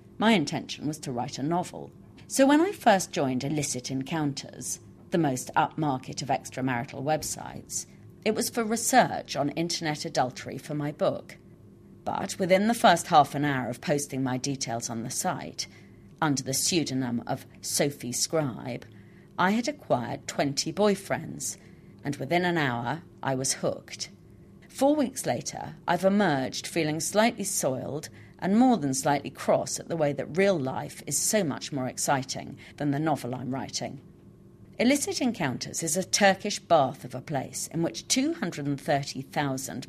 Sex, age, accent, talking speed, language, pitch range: female, 40-59, British, 155 wpm, English, 135-180 Hz